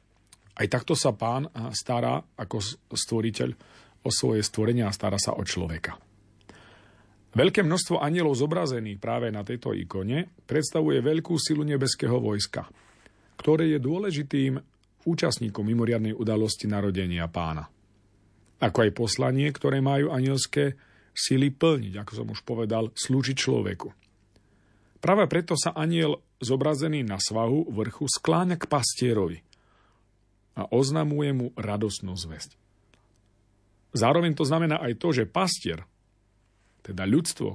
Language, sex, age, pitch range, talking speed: Slovak, male, 40-59, 105-140 Hz, 120 wpm